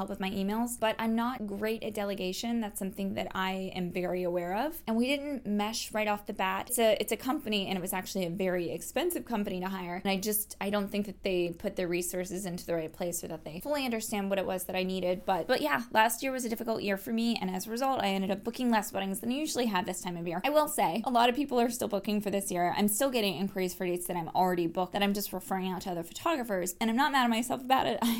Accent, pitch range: American, 190-230 Hz